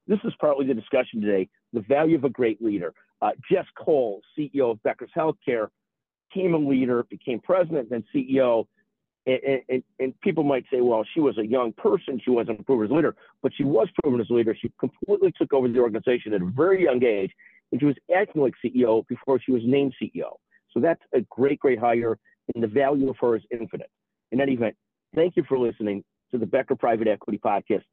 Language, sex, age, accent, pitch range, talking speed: English, male, 50-69, American, 110-145 Hz, 215 wpm